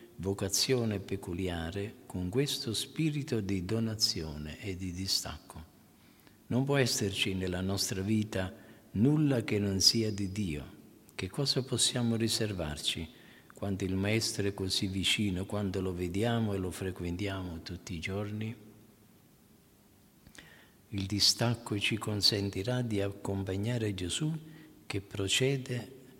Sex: male